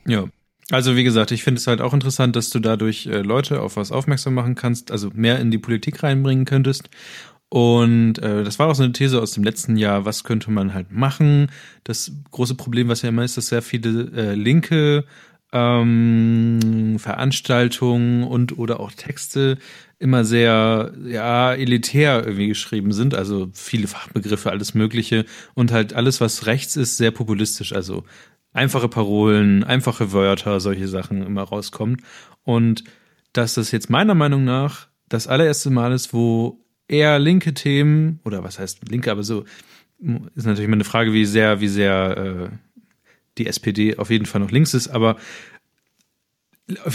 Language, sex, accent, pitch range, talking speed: German, male, German, 110-135 Hz, 165 wpm